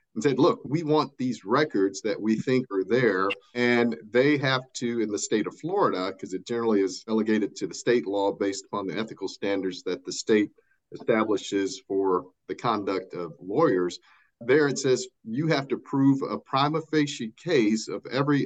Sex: male